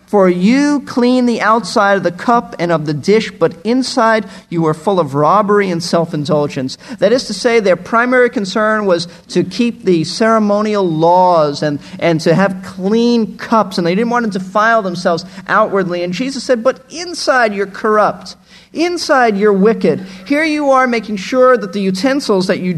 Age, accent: 40-59, American